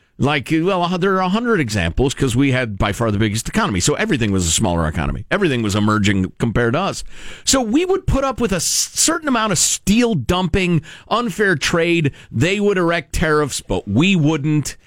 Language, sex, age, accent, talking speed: English, male, 40-59, American, 195 wpm